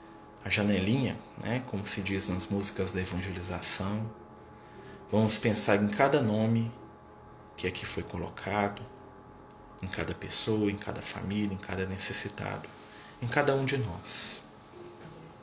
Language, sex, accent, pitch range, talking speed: Portuguese, male, Brazilian, 95-105 Hz, 130 wpm